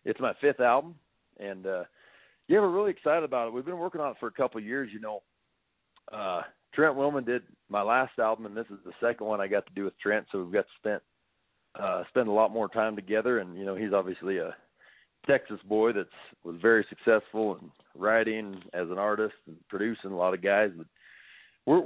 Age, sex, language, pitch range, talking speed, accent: 40-59, male, English, 105-125 Hz, 220 wpm, American